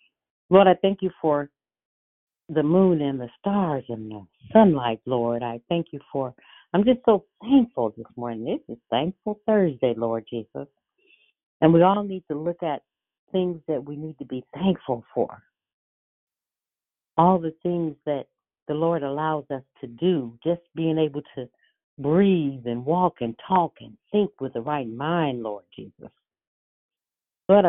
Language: English